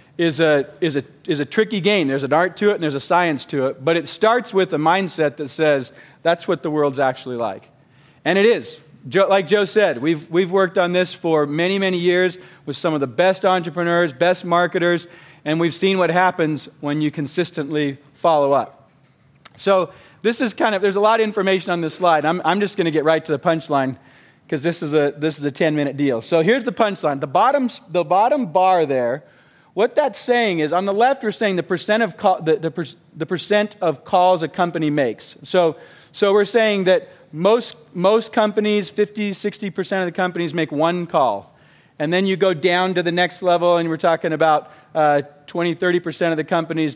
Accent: American